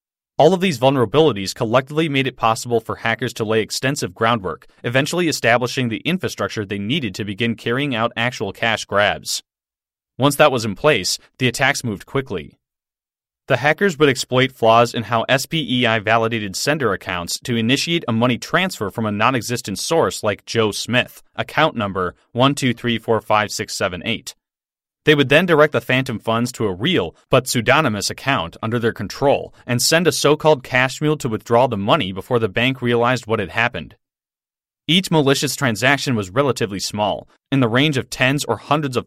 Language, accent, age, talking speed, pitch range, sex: English, American, 30-49, 165 wpm, 110-140 Hz, male